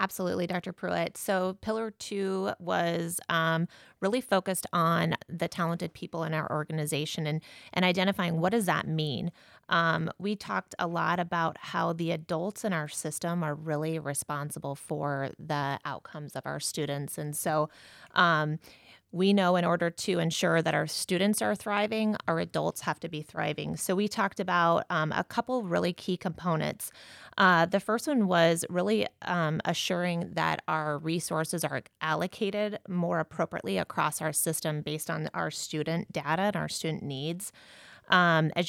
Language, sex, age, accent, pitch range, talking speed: English, female, 30-49, American, 155-185 Hz, 160 wpm